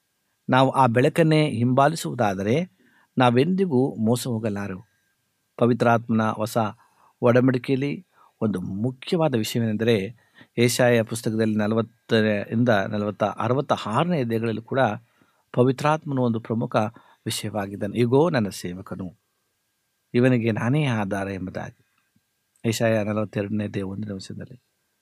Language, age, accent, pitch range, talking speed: Kannada, 60-79, native, 110-135 Hz, 85 wpm